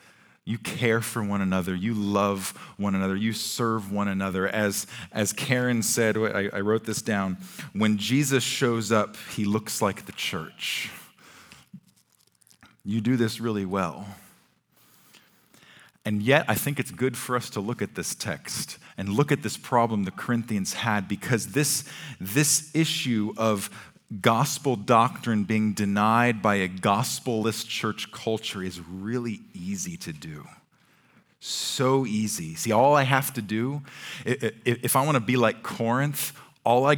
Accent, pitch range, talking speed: American, 105-130 Hz, 150 wpm